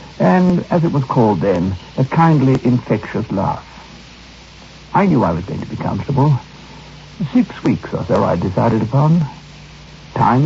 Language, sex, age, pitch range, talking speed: English, male, 70-89, 120-175 Hz, 150 wpm